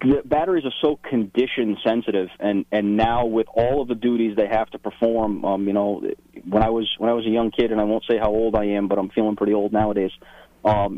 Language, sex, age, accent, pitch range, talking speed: English, male, 30-49, American, 100-115 Hz, 245 wpm